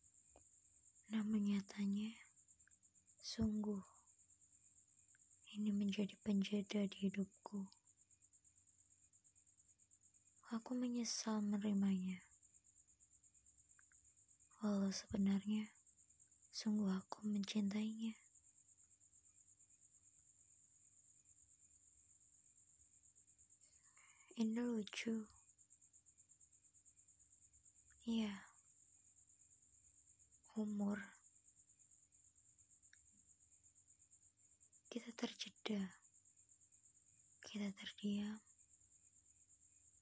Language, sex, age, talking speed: Indonesian, male, 20-39, 35 wpm